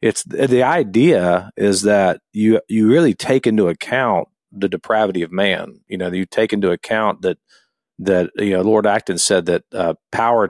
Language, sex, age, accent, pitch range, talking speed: English, male, 40-59, American, 100-125 Hz, 175 wpm